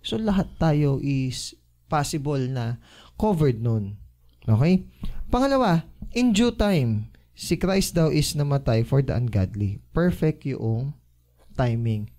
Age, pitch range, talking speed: 20-39, 110-175 Hz, 120 wpm